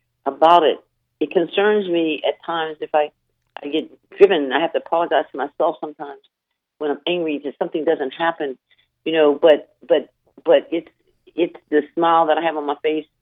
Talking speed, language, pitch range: 185 wpm, English, 140-200 Hz